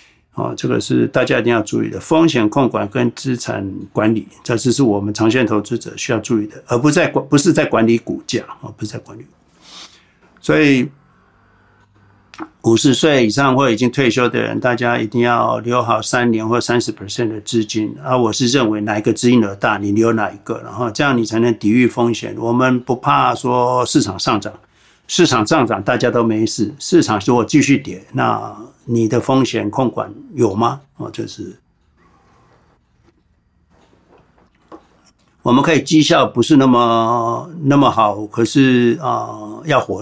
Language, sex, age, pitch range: Chinese, male, 60-79, 110-135 Hz